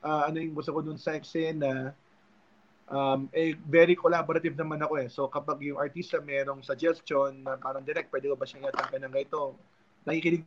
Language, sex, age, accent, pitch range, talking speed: Filipino, male, 20-39, native, 135-160 Hz, 185 wpm